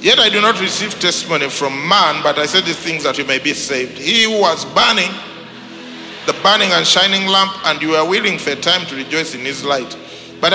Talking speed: 230 wpm